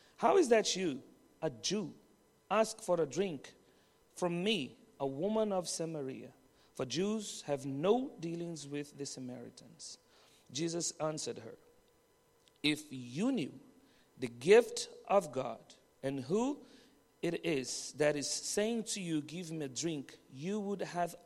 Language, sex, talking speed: English, male, 140 wpm